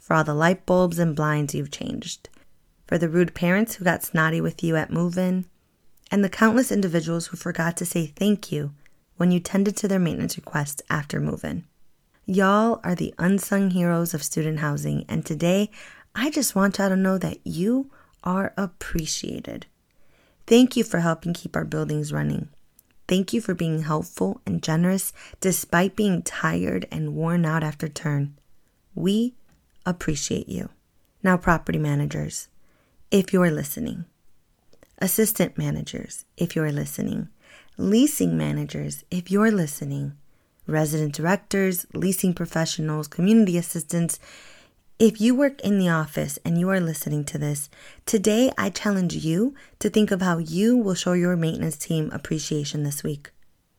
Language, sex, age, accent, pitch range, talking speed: English, female, 20-39, American, 155-200 Hz, 155 wpm